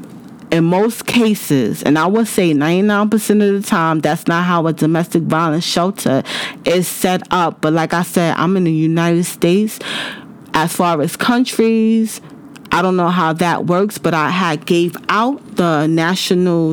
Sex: female